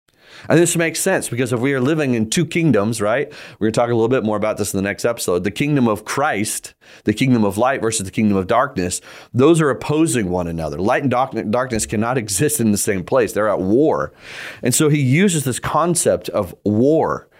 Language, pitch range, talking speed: English, 100-140 Hz, 225 wpm